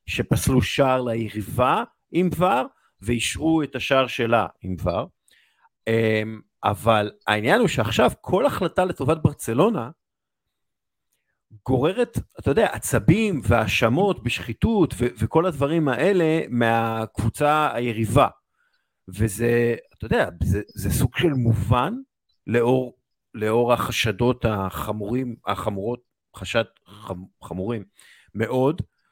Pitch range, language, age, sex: 110-140 Hz, Hebrew, 50-69, male